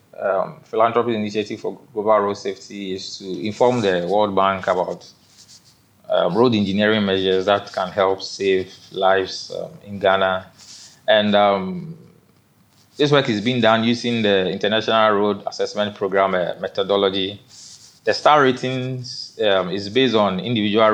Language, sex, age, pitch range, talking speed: English, male, 20-39, 95-110 Hz, 140 wpm